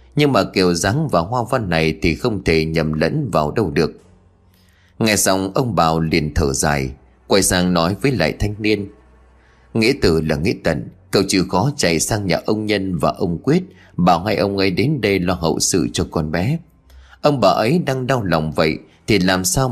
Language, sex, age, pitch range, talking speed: Vietnamese, male, 20-39, 80-115 Hz, 205 wpm